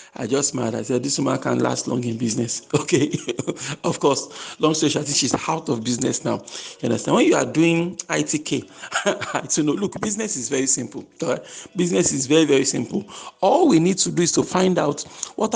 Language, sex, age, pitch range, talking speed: English, male, 50-69, 130-165 Hz, 195 wpm